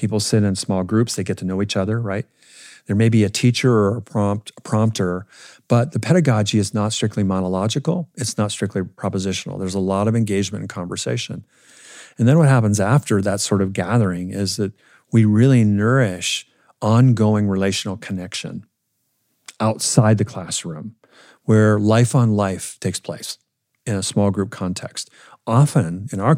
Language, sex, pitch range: English, male, 95-120 Hz